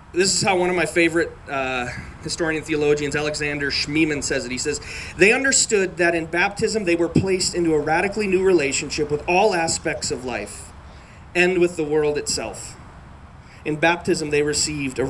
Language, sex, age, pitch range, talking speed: English, male, 30-49, 115-155 Hz, 175 wpm